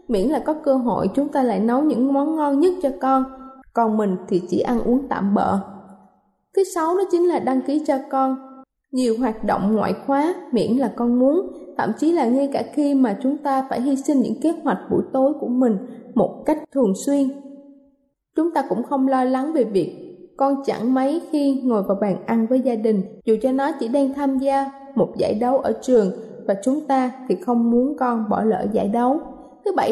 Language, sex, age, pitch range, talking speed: Vietnamese, female, 10-29, 230-295 Hz, 215 wpm